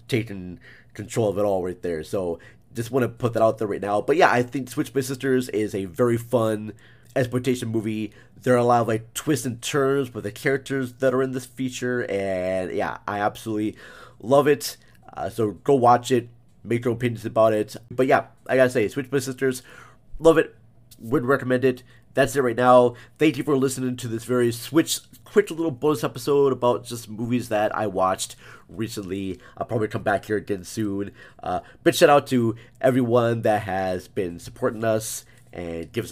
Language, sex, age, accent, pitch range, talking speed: English, male, 30-49, American, 105-130 Hz, 200 wpm